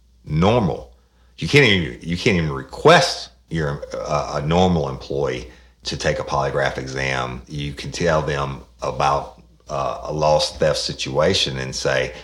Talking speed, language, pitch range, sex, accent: 140 wpm, English, 65-80 Hz, male, American